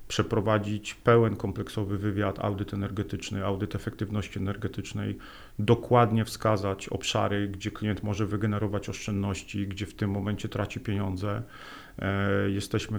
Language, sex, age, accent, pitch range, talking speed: Polish, male, 40-59, native, 100-115 Hz, 110 wpm